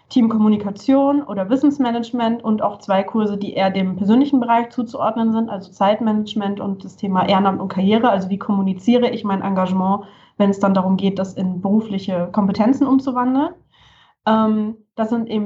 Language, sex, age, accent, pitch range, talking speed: German, female, 20-39, German, 200-235 Hz, 150 wpm